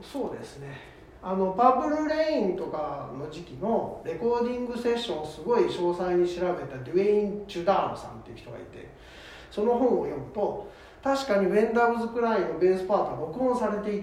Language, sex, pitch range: Japanese, male, 180-250 Hz